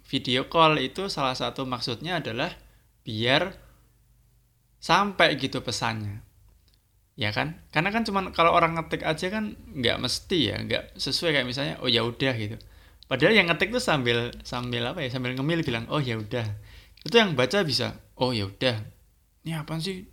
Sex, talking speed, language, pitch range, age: male, 165 wpm, English, 110-150 Hz, 20-39